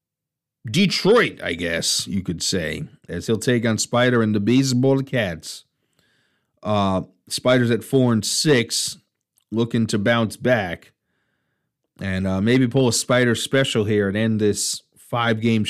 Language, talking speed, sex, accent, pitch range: English, 150 wpm, male, American, 110-140 Hz